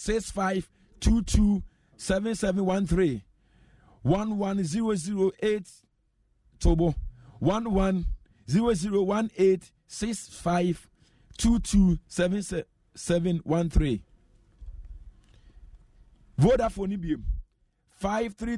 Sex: male